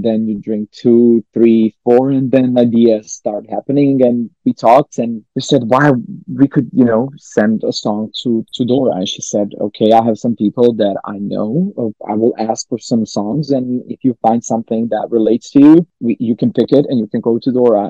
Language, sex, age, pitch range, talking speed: English, male, 20-39, 115-135 Hz, 215 wpm